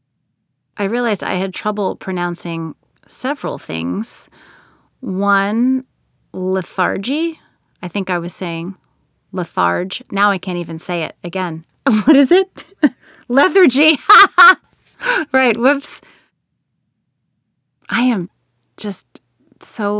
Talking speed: 100 wpm